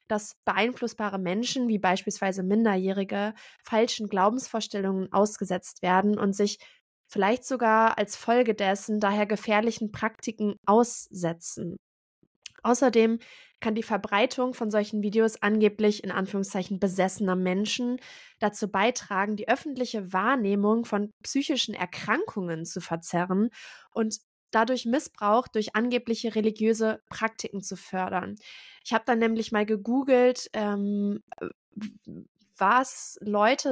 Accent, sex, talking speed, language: German, female, 110 wpm, German